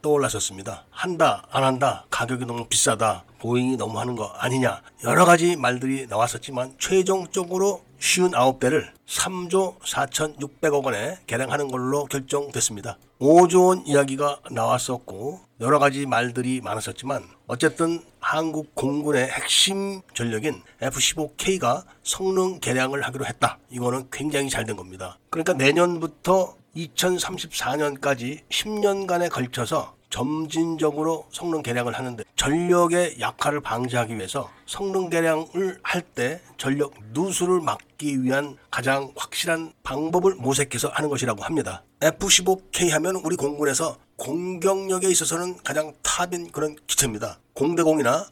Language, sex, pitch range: Korean, male, 130-175 Hz